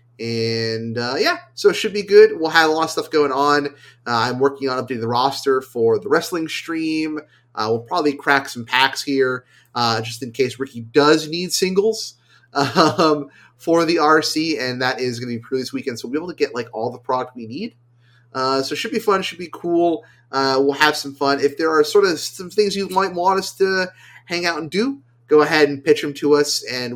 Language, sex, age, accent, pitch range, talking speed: English, male, 30-49, American, 120-160 Hz, 235 wpm